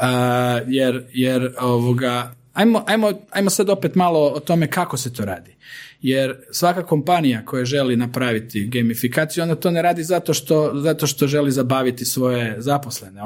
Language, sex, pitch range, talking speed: Croatian, male, 125-150 Hz, 160 wpm